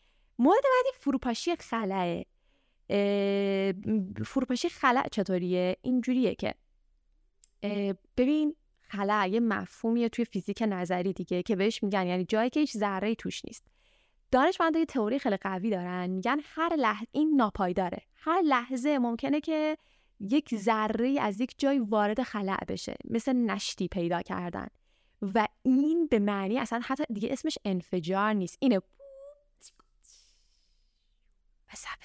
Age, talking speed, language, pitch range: 20-39, 125 wpm, Persian, 195-265 Hz